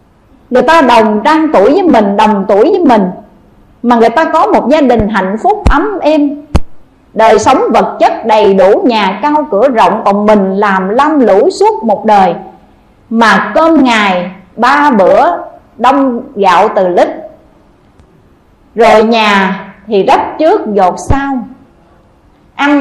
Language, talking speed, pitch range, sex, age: Vietnamese, 150 wpm, 210-295 Hz, female, 50-69